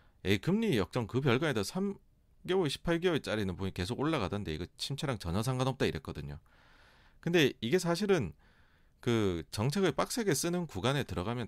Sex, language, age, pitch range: male, Korean, 40-59, 90-130 Hz